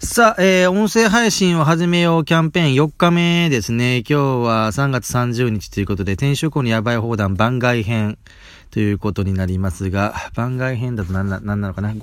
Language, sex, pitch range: Japanese, male, 95-130 Hz